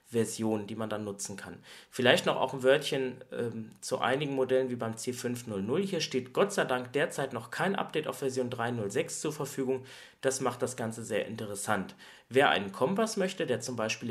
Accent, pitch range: German, 110-135 Hz